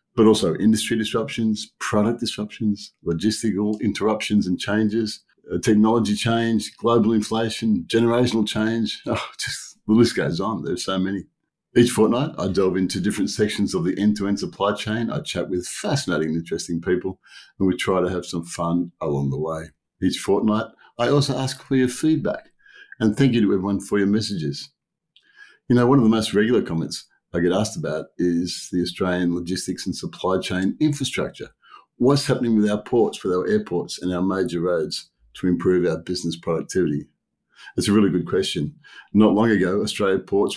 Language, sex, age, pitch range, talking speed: English, male, 50-69, 90-110 Hz, 170 wpm